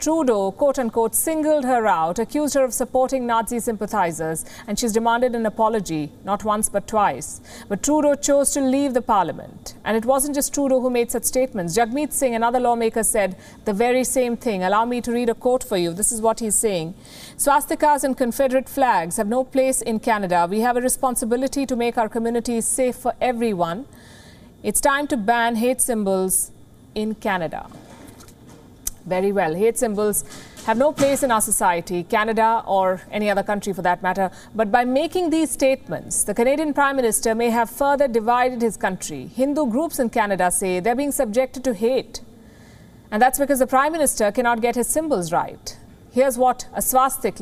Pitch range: 210-265 Hz